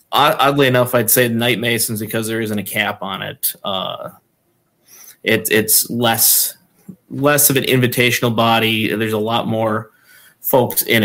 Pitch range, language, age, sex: 105-125 Hz, English, 30-49, male